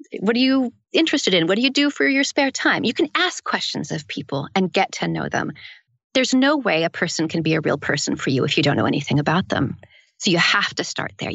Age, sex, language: 40-59, female, English